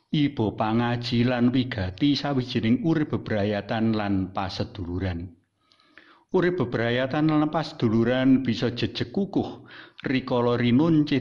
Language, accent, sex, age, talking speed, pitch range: Indonesian, native, male, 50-69, 95 wpm, 105-130 Hz